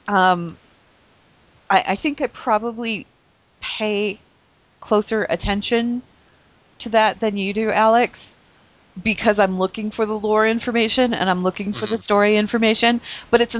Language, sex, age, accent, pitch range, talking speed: English, female, 30-49, American, 190-230 Hz, 135 wpm